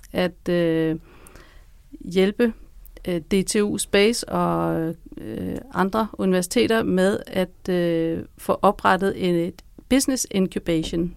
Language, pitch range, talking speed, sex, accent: Danish, 175-210 Hz, 100 wpm, female, native